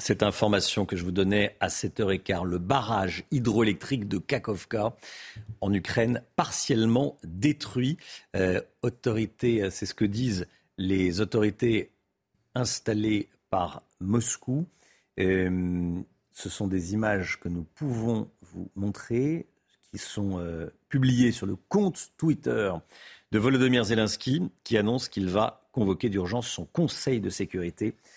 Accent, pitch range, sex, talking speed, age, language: French, 95-120 Hz, male, 125 wpm, 50-69, French